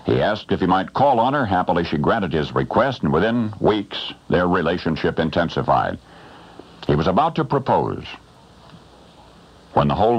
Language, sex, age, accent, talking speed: English, male, 60-79, American, 160 wpm